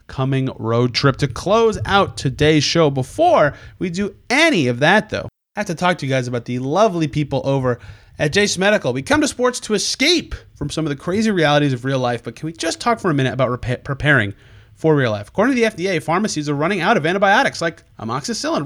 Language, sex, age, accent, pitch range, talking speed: English, male, 30-49, American, 130-185 Hz, 225 wpm